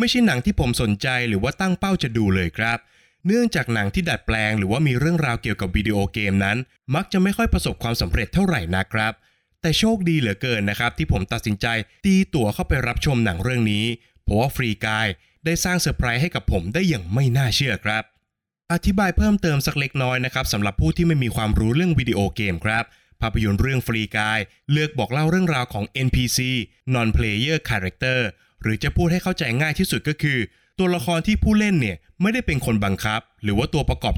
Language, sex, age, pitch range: Thai, male, 20-39, 110-160 Hz